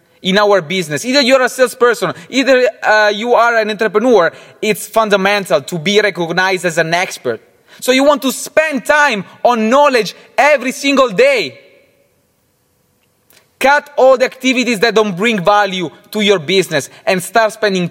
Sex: male